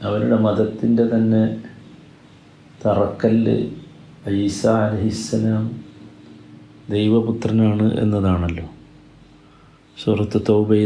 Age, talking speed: 50-69, 55 wpm